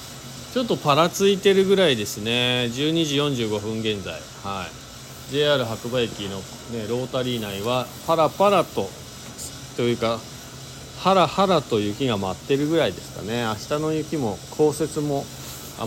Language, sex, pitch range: Japanese, male, 120-160 Hz